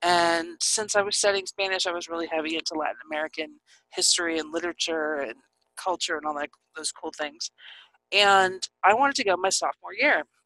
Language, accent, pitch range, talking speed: English, American, 170-235 Hz, 185 wpm